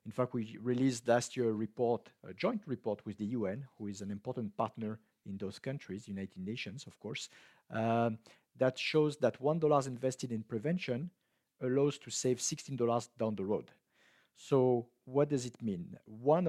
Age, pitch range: 50-69, 115-145 Hz